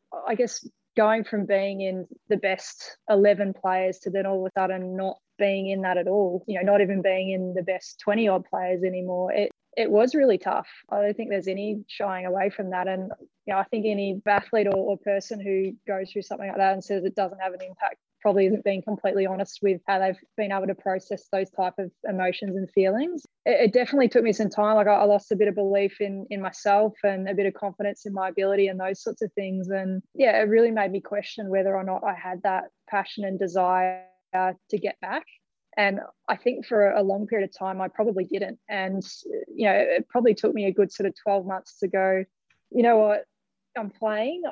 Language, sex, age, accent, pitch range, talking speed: English, female, 20-39, Australian, 190-210 Hz, 225 wpm